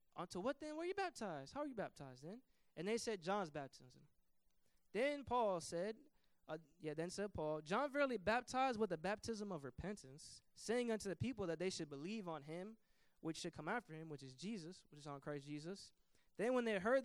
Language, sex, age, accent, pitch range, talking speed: English, male, 20-39, American, 145-200 Hz, 210 wpm